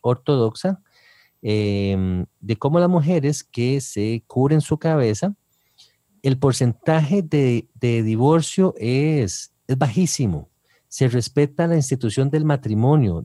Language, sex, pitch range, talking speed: English, male, 115-155 Hz, 115 wpm